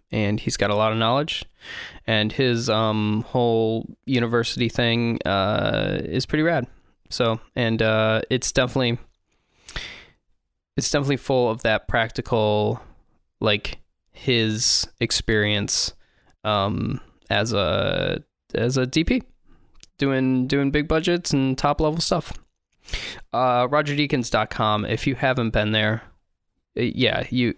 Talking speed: 120 wpm